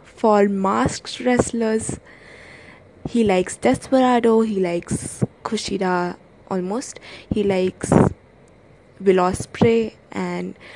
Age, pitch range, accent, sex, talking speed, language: 20-39, 190-225 Hz, Indian, female, 80 wpm, English